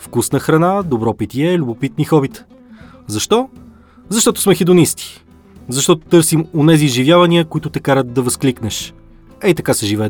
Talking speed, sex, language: 135 wpm, male, Bulgarian